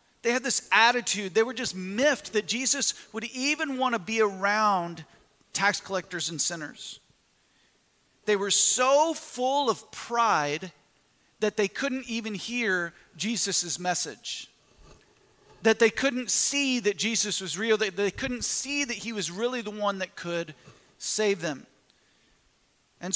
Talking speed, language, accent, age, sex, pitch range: 145 wpm, English, American, 40-59, male, 190-240 Hz